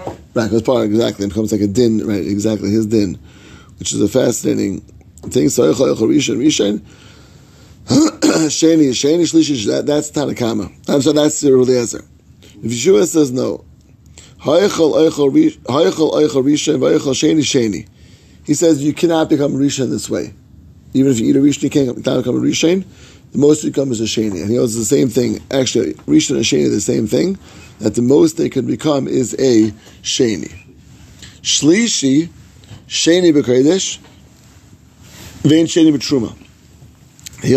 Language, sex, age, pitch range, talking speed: English, male, 30-49, 110-150 Hz, 160 wpm